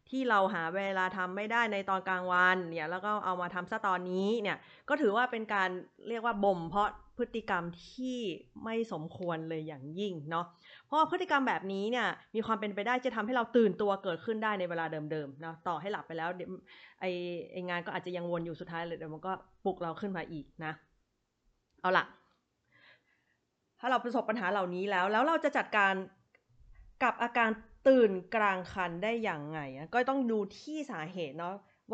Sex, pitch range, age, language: female, 175-230 Hz, 20-39, Thai